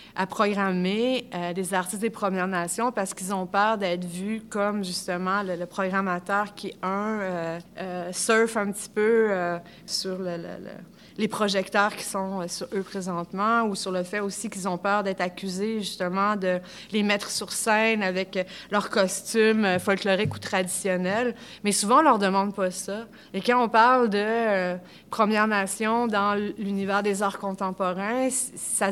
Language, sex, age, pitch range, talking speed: French, female, 30-49, 185-215 Hz, 165 wpm